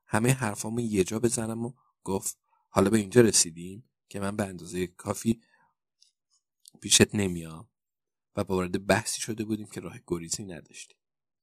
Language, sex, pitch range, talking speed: Persian, male, 95-115 Hz, 140 wpm